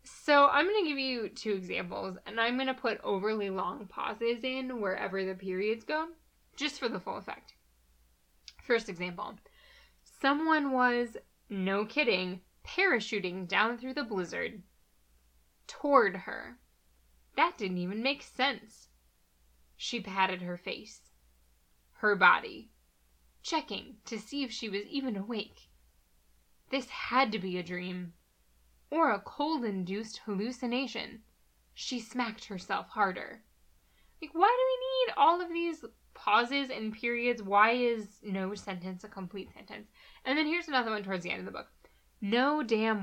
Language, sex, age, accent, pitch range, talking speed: English, female, 10-29, American, 180-250 Hz, 145 wpm